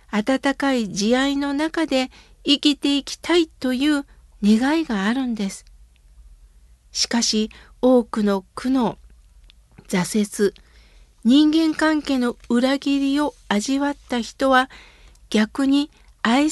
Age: 50-69